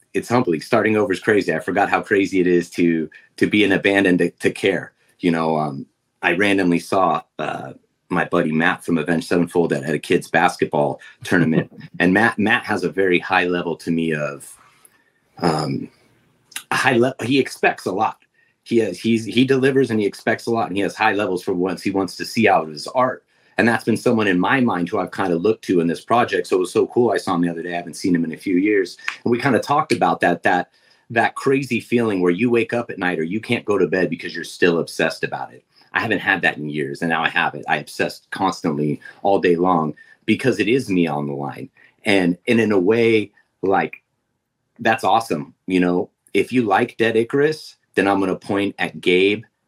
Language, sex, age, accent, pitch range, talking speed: English, male, 30-49, American, 85-115 Hz, 230 wpm